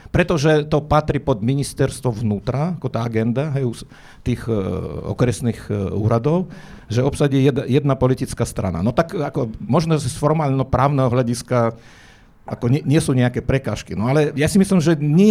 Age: 50-69